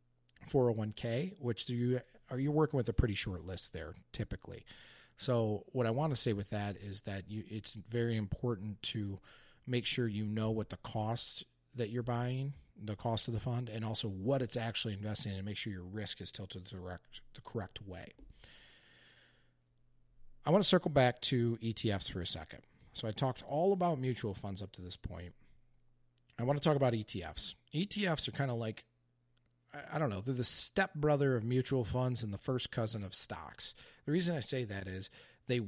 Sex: male